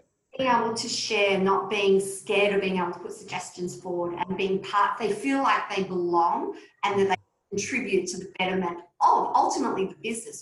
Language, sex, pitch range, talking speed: English, female, 195-250 Hz, 190 wpm